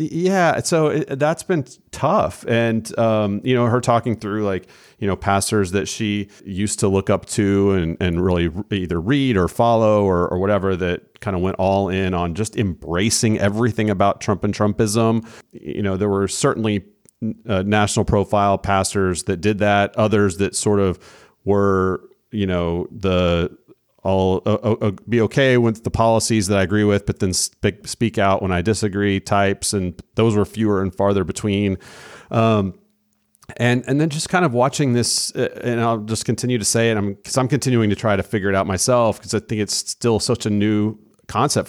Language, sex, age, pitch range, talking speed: English, male, 40-59, 95-115 Hz, 190 wpm